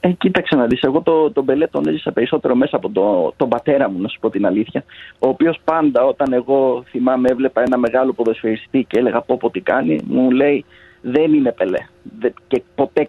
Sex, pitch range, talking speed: male, 135-185 Hz, 205 wpm